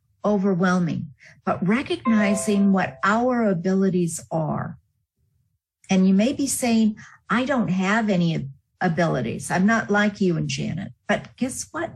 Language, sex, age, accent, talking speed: English, female, 50-69, American, 130 wpm